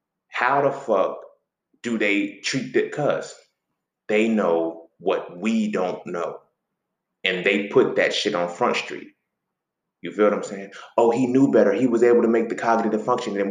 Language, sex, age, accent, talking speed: English, male, 20-39, American, 180 wpm